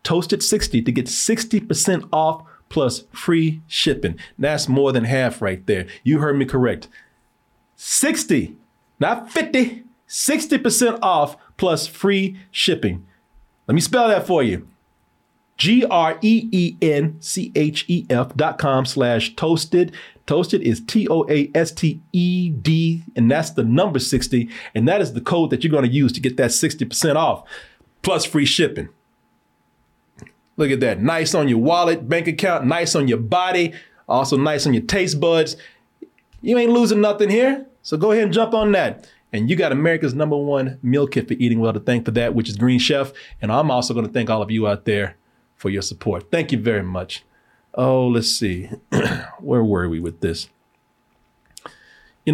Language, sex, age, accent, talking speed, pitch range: English, male, 40-59, American, 160 wpm, 120-175 Hz